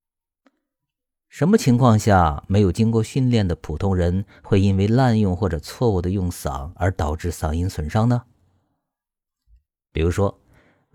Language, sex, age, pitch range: Chinese, male, 50-69, 85-115 Hz